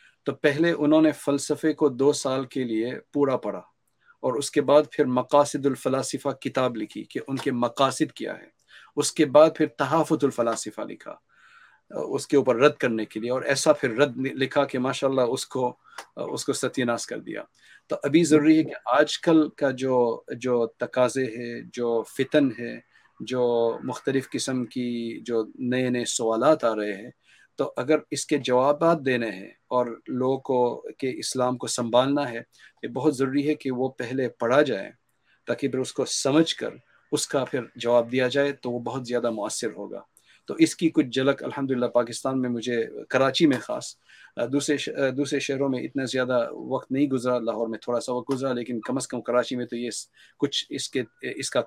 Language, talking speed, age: English, 150 wpm, 50-69